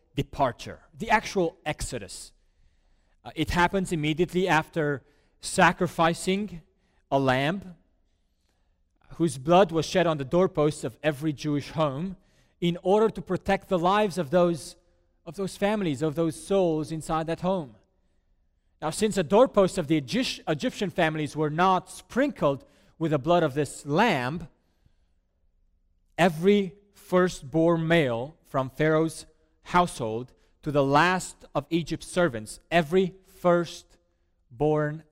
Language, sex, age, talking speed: English, male, 30-49, 120 wpm